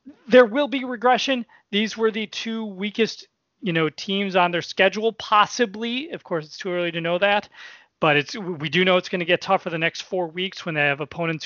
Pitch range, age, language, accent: 160-195 Hz, 30-49, English, American